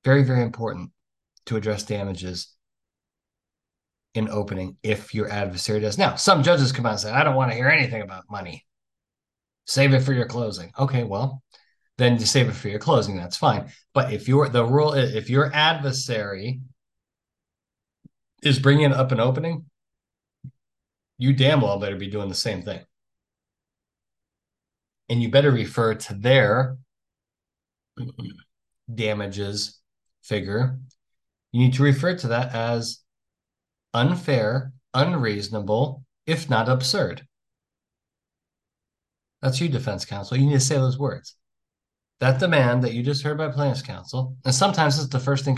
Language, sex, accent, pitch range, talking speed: English, male, American, 105-135 Hz, 145 wpm